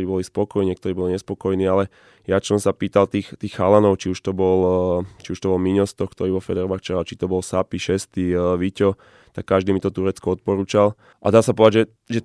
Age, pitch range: 20-39, 95-105 Hz